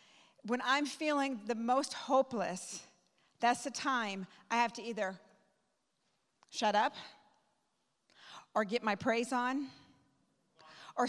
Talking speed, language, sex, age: 115 wpm, English, female, 50-69